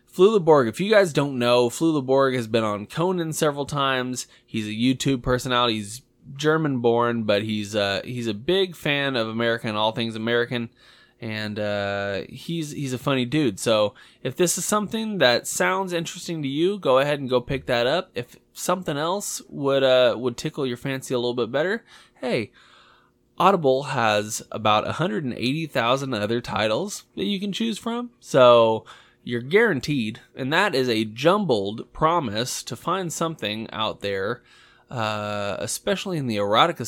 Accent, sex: American, male